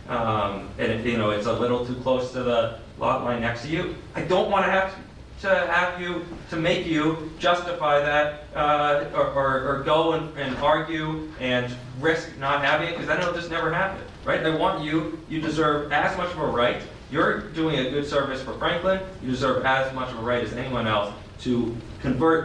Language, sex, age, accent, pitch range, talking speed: English, male, 30-49, American, 115-160 Hz, 215 wpm